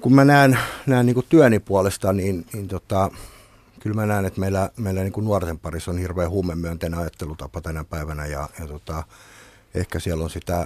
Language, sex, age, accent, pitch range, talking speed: Finnish, male, 50-69, native, 85-100 Hz, 180 wpm